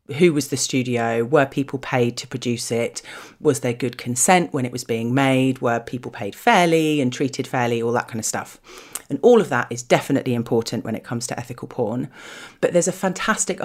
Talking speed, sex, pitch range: 210 wpm, female, 120-150 Hz